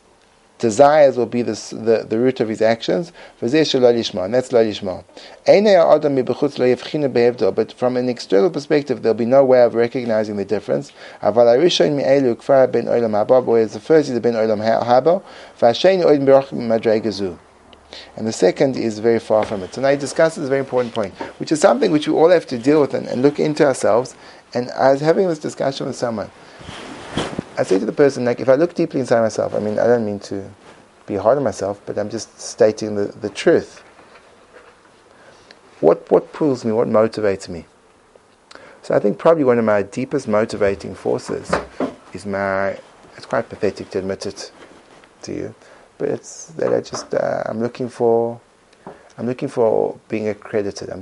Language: English